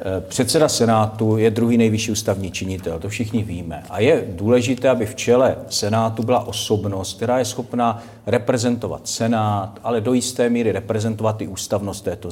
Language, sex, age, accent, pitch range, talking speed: Czech, male, 50-69, native, 105-120 Hz, 155 wpm